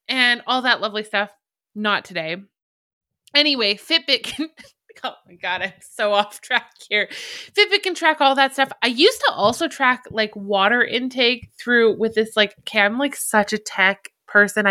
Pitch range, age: 210-275 Hz, 20-39